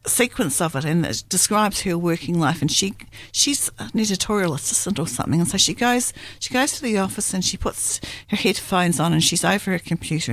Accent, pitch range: Australian, 135-180 Hz